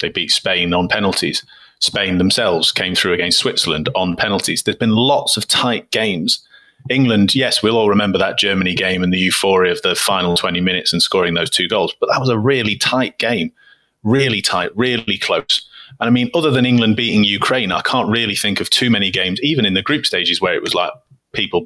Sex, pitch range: male, 100-130 Hz